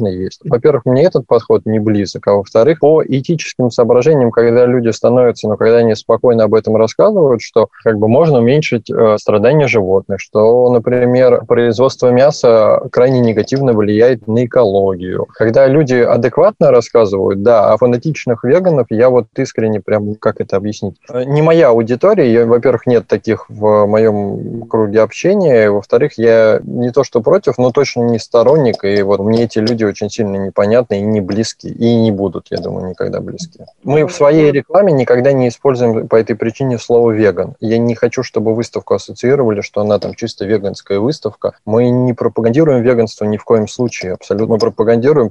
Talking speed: 165 wpm